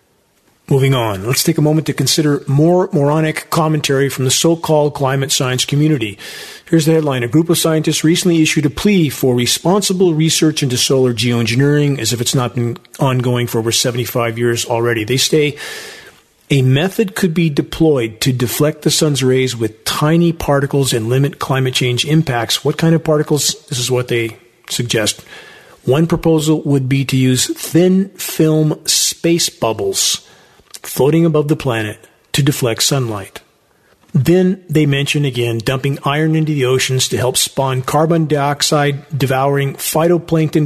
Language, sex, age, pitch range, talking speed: English, male, 40-59, 130-160 Hz, 155 wpm